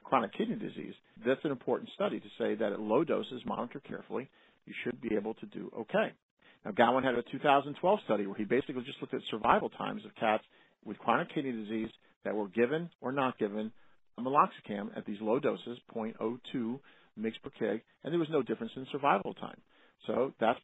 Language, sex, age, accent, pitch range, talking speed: English, male, 50-69, American, 110-135 Hz, 200 wpm